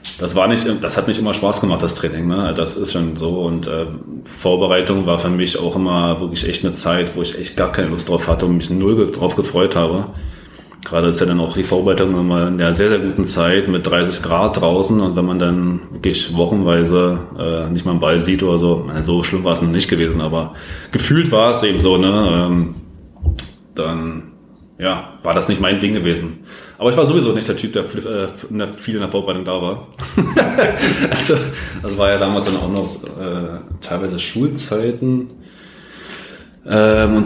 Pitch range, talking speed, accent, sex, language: 85-100 Hz, 200 wpm, German, male, German